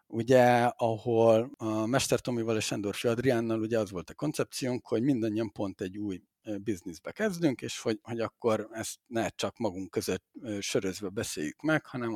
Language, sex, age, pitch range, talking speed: Hungarian, male, 60-79, 105-130 Hz, 160 wpm